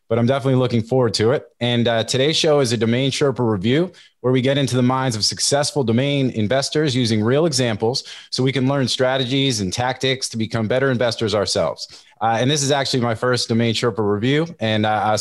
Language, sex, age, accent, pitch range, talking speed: English, male, 30-49, American, 110-130 Hz, 210 wpm